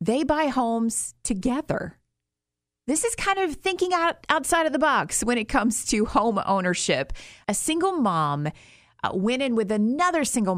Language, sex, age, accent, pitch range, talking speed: English, female, 30-49, American, 180-265 Hz, 160 wpm